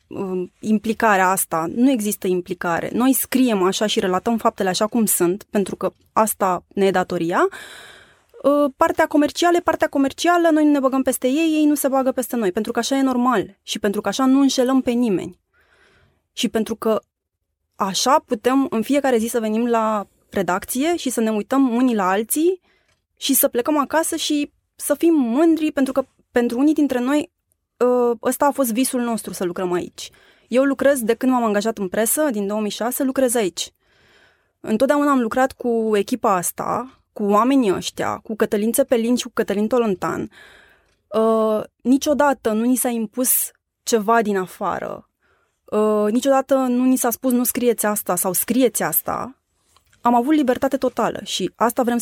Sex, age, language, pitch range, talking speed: female, 20-39, Romanian, 210-270 Hz, 170 wpm